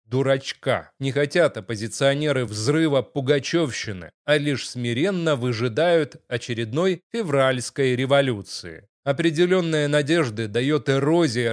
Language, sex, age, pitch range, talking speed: Russian, male, 30-49, 125-155 Hz, 90 wpm